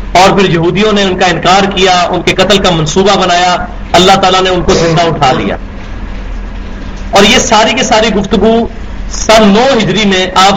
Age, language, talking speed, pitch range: 40-59, English, 185 wpm, 180-220 Hz